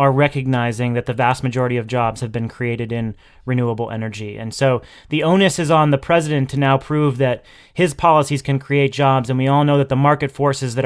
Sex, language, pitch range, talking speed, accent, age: male, English, 125-155 Hz, 220 wpm, American, 30-49